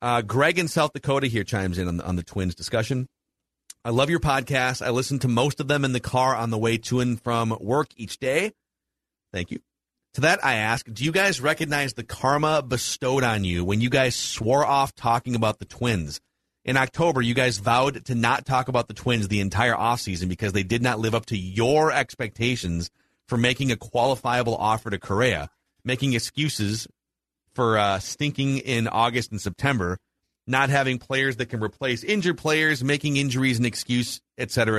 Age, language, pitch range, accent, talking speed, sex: 30-49, English, 110-135 Hz, American, 195 wpm, male